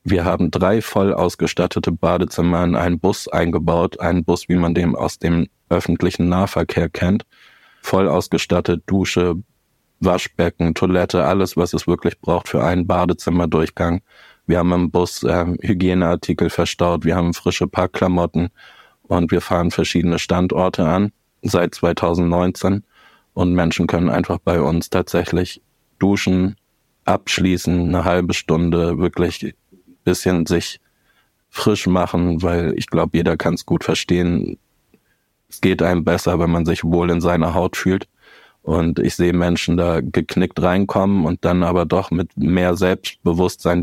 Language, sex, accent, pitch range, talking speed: German, male, German, 85-90 Hz, 140 wpm